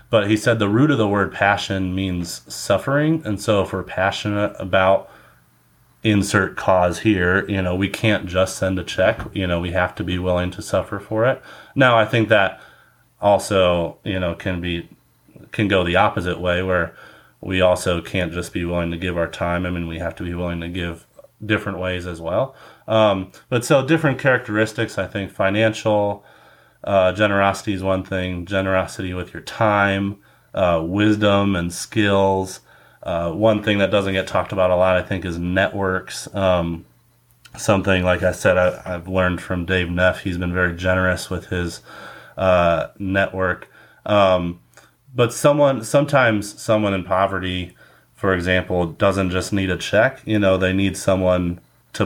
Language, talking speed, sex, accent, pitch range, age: English, 175 wpm, male, American, 90-105 Hz, 30-49